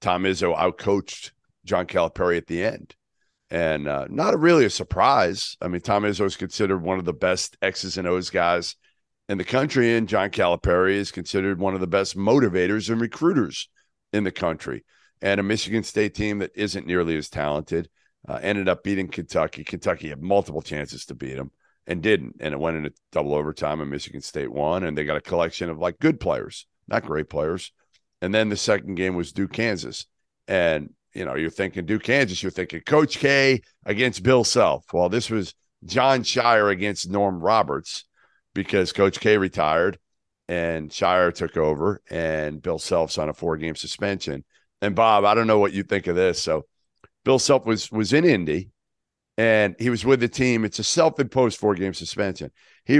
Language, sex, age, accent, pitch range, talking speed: English, male, 50-69, American, 85-115 Hz, 190 wpm